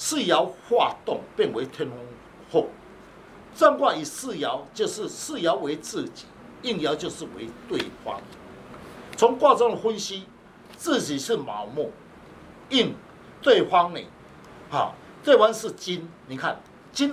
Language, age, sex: Chinese, 60-79, male